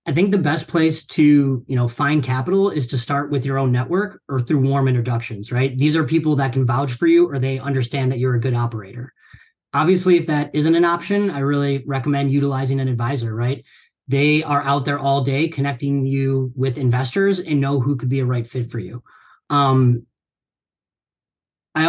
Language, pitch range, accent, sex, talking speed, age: English, 130-155 Hz, American, male, 200 wpm, 30-49